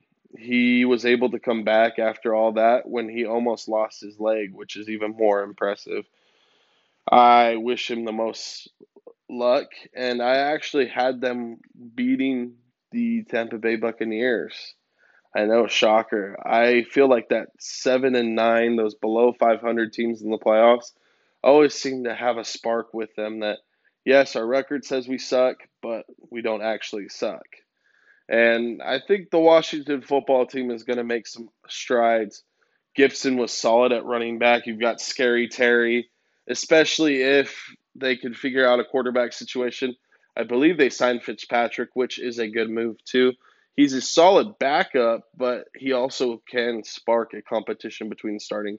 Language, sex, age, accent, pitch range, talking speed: English, male, 20-39, American, 115-130 Hz, 160 wpm